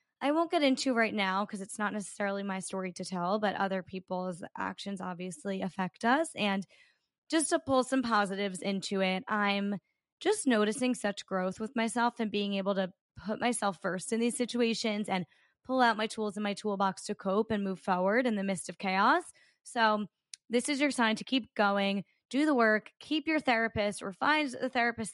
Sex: female